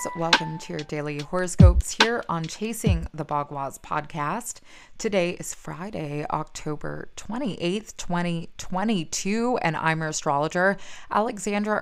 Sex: female